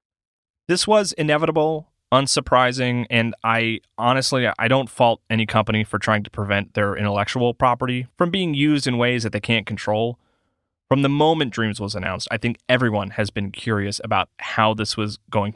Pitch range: 110-140 Hz